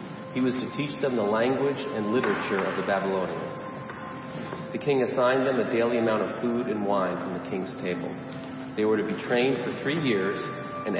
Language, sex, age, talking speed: English, male, 40-59, 195 wpm